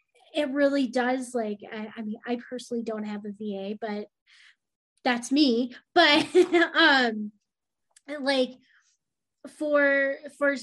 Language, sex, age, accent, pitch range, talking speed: English, female, 20-39, American, 225-270 Hz, 120 wpm